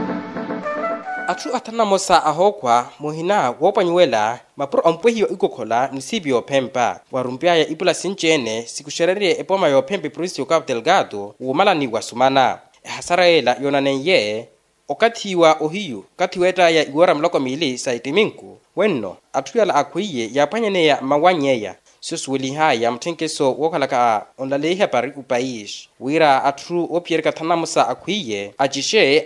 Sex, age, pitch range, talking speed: male, 20-39, 130-180 Hz, 130 wpm